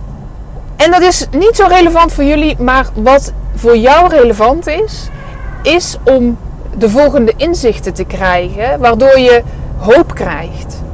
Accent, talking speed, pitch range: Dutch, 135 wpm, 195-270 Hz